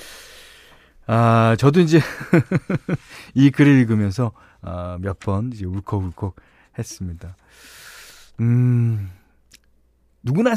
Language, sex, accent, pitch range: Korean, male, native, 90-145 Hz